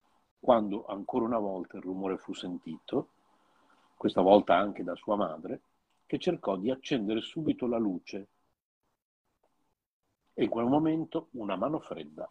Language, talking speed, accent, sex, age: Italian, 135 wpm, native, male, 50-69